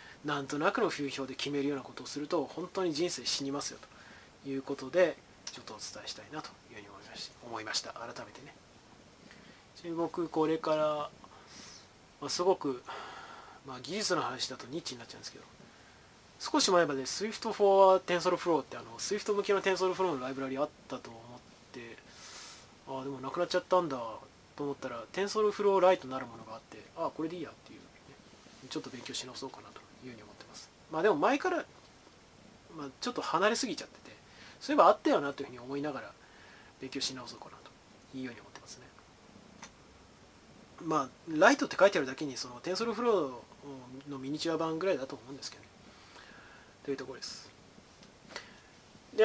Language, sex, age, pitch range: Japanese, male, 20-39, 130-175 Hz